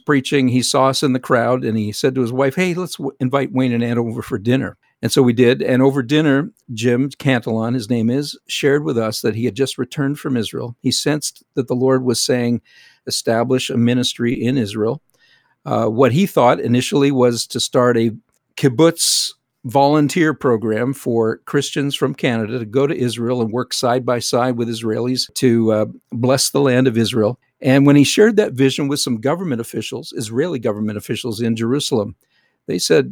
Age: 50-69